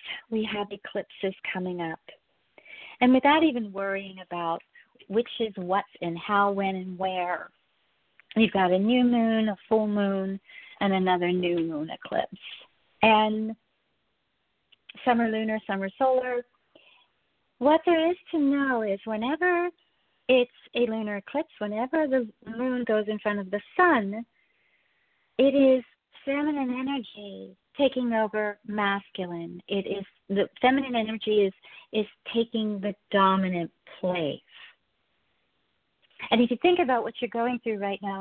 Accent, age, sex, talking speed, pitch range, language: American, 40-59, female, 135 wpm, 195-245 Hz, English